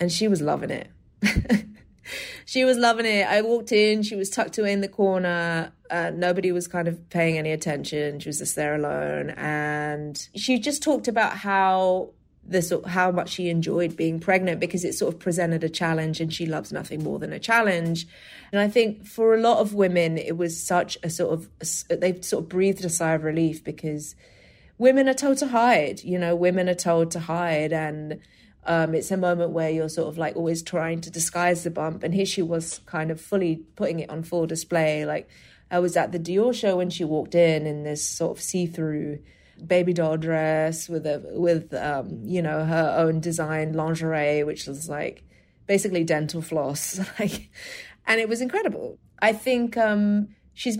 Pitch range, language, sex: 160-195 Hz, English, female